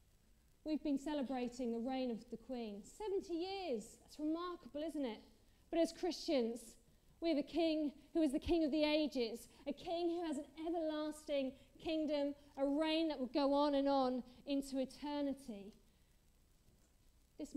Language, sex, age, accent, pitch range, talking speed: English, female, 40-59, British, 245-295 Hz, 155 wpm